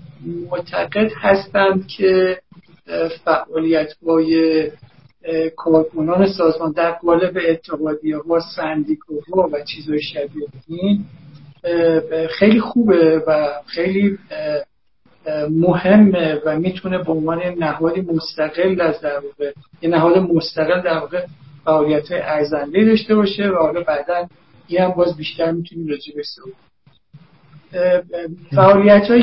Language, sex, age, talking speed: Persian, male, 50-69, 95 wpm